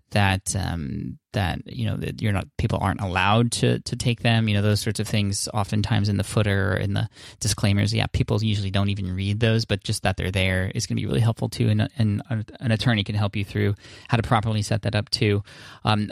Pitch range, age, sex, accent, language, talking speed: 100-115 Hz, 20-39, male, American, English, 240 wpm